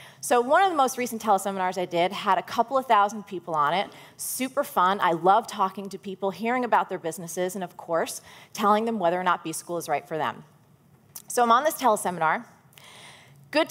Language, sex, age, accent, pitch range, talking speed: English, female, 30-49, American, 180-235 Hz, 205 wpm